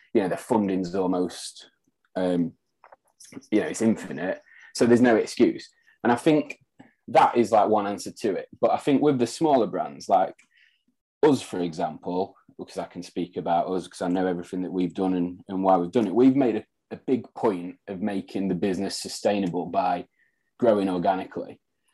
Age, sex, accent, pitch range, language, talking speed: 20-39, male, British, 90-120 Hz, English, 185 wpm